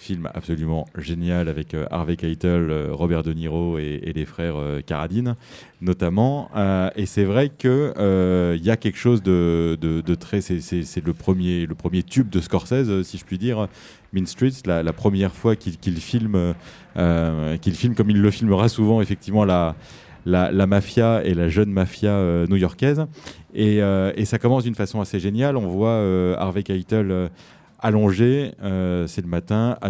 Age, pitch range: 30-49, 90-110 Hz